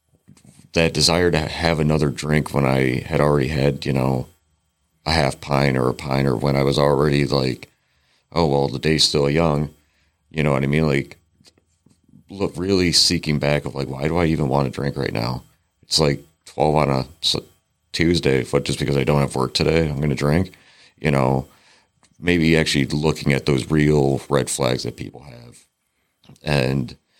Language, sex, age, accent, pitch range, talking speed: English, male, 40-59, American, 70-80 Hz, 185 wpm